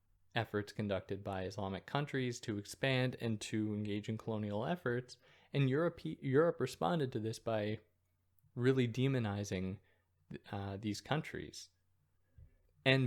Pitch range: 100-125 Hz